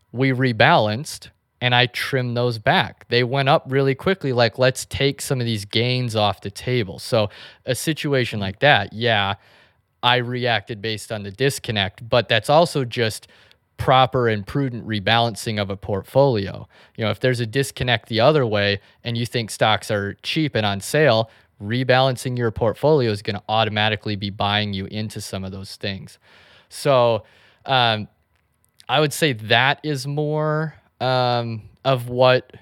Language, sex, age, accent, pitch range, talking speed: English, male, 30-49, American, 105-130 Hz, 165 wpm